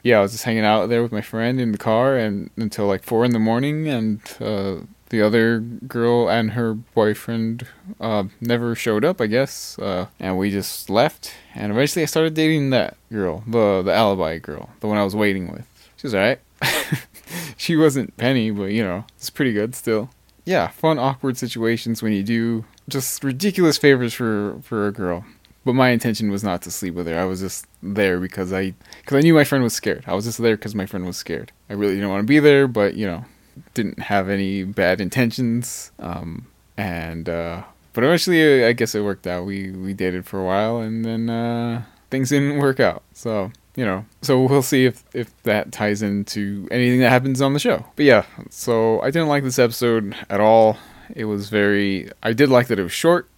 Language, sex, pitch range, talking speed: English, male, 100-125 Hz, 210 wpm